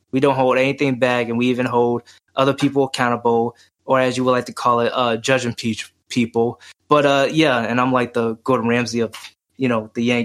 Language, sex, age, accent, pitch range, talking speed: English, male, 20-39, American, 115-130 Hz, 215 wpm